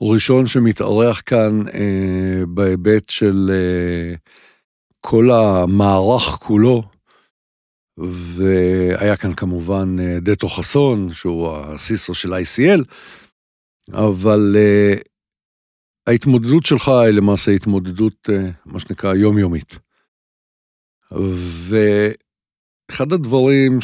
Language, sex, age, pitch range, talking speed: English, male, 50-69, 90-120 Hz, 70 wpm